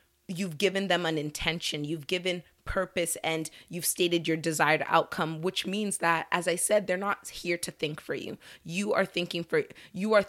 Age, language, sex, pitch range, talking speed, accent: 30-49, English, female, 160-190 Hz, 190 wpm, American